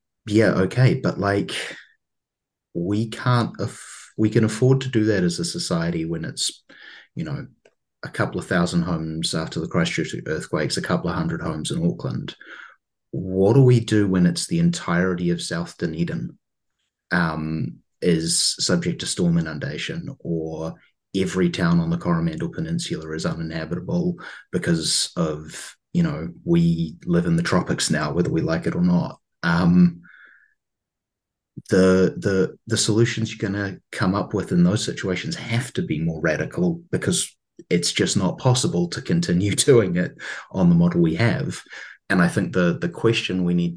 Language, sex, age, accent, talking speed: English, male, 30-49, Australian, 160 wpm